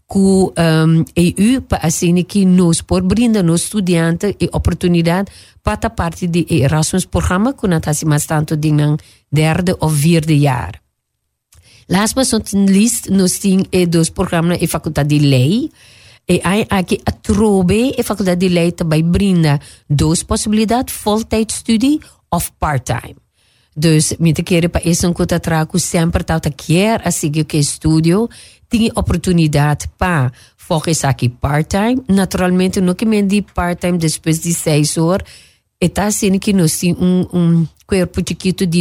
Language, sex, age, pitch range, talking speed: Dutch, female, 40-59, 155-195 Hz, 165 wpm